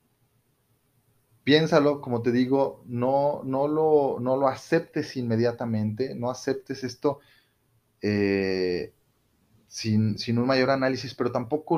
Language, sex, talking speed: Spanish, male, 110 wpm